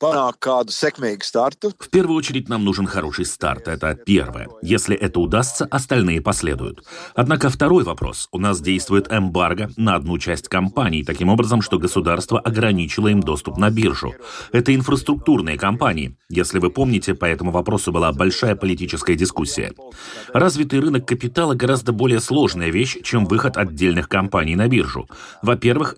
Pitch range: 90-120 Hz